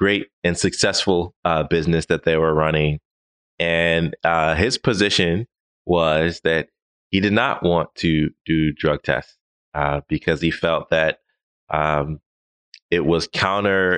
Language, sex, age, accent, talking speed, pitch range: English, male, 20-39, American, 135 wpm, 80-95 Hz